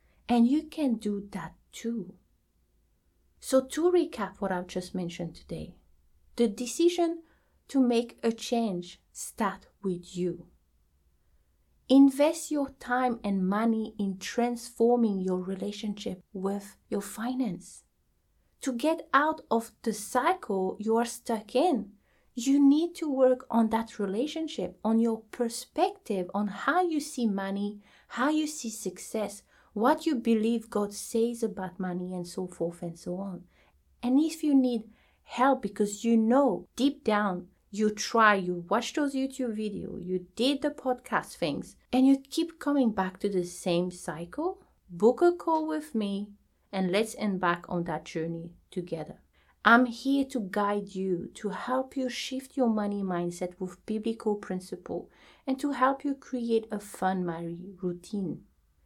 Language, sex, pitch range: English, female, 185-255 Hz